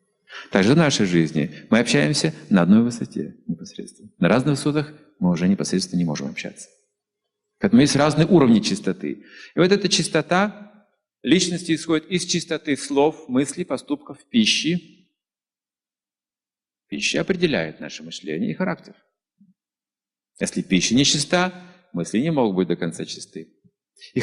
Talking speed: 135 wpm